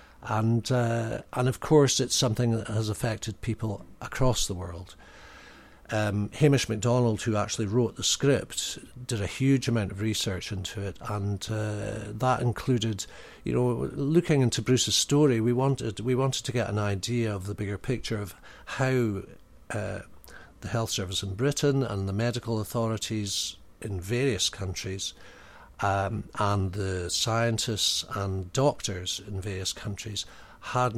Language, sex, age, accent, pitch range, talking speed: English, male, 60-79, British, 100-120 Hz, 150 wpm